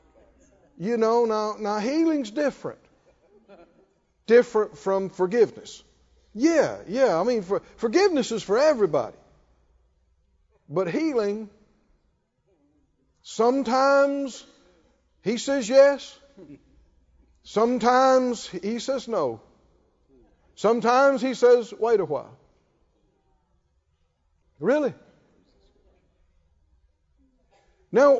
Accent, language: American, English